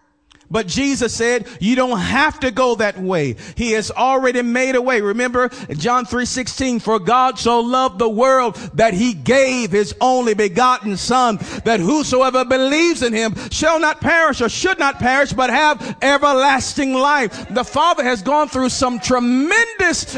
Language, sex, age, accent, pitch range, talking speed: English, male, 40-59, American, 220-265 Hz, 165 wpm